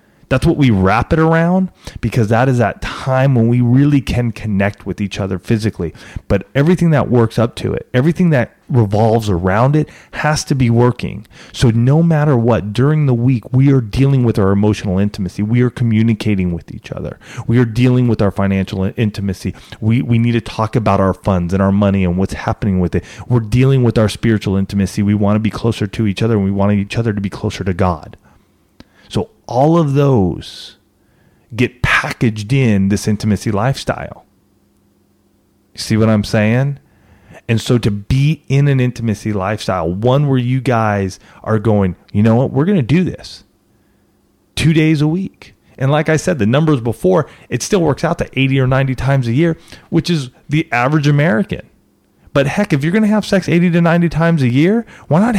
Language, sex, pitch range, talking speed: English, male, 105-140 Hz, 195 wpm